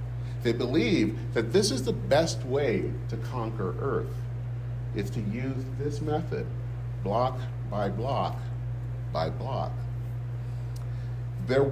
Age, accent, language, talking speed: 50-69, American, English, 115 wpm